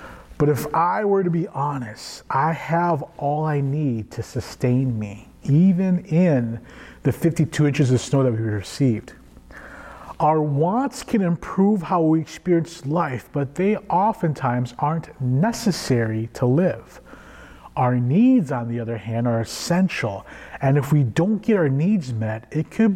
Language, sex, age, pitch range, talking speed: English, male, 30-49, 130-185 Hz, 150 wpm